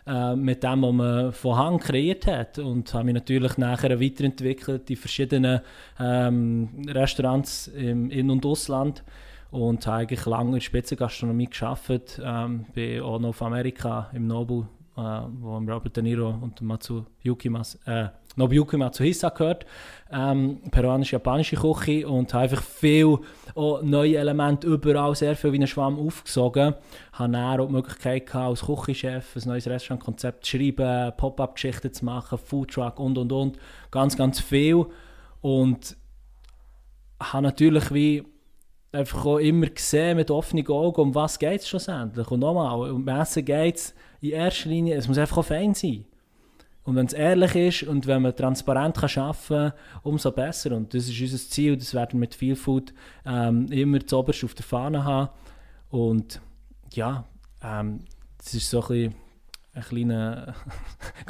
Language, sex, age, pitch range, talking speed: German, male, 20-39, 120-145 Hz, 155 wpm